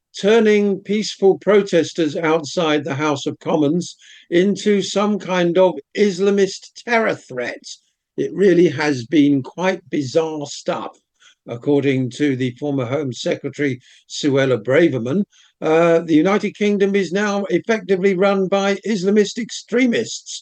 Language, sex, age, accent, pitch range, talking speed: English, male, 60-79, British, 140-190 Hz, 120 wpm